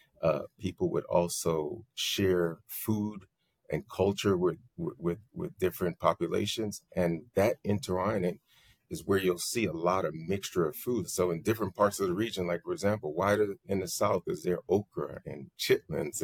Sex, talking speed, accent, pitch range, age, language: male, 165 wpm, American, 85-110 Hz, 30-49, English